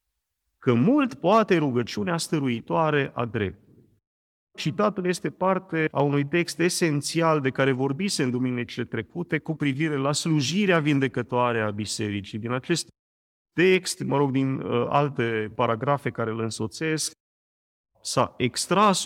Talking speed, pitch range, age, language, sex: 125 wpm, 115-165 Hz, 40-59, Romanian, male